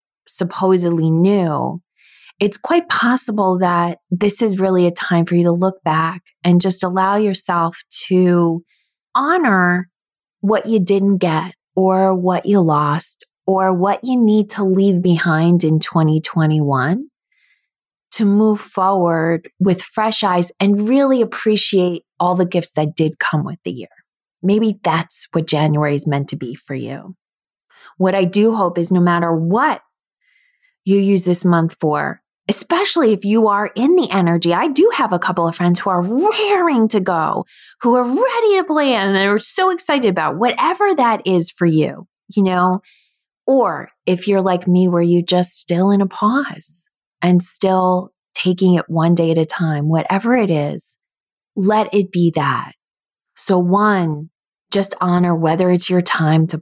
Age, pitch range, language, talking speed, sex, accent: 20-39, 170-205 Hz, English, 160 wpm, female, American